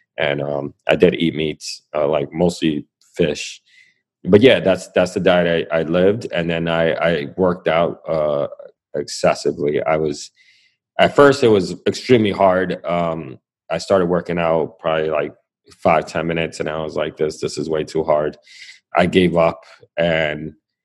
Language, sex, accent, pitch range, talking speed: English, male, American, 80-95 Hz, 170 wpm